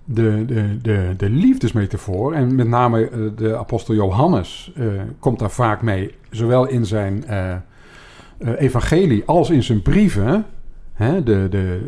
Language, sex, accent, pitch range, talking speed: Dutch, male, Dutch, 110-150 Hz, 125 wpm